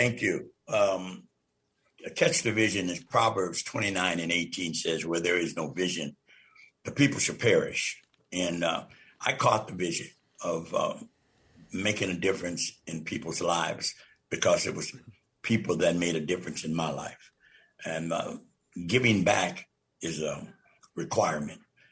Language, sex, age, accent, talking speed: English, male, 60-79, American, 145 wpm